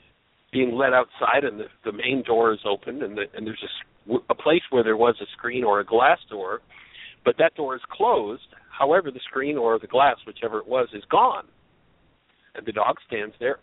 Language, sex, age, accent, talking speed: English, male, 50-69, American, 205 wpm